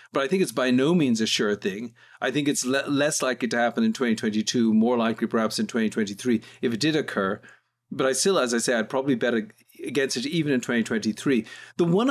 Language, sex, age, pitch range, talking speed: English, male, 50-69, 120-195 Hz, 225 wpm